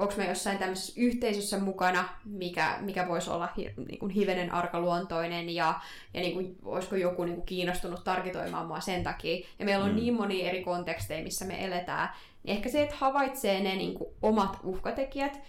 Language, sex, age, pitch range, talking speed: Finnish, female, 20-39, 180-210 Hz, 170 wpm